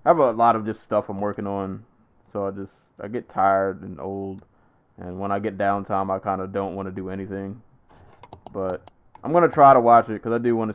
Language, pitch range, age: English, 95-115 Hz, 20-39